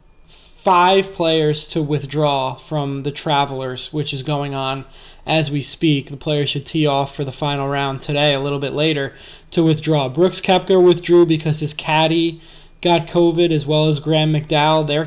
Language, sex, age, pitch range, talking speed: English, male, 20-39, 145-170 Hz, 175 wpm